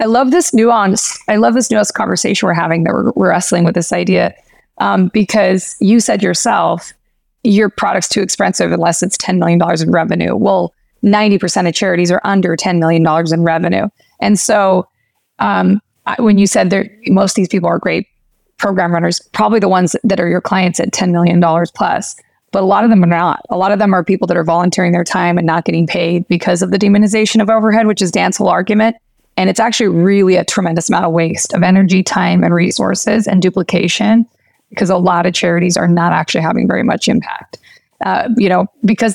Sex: female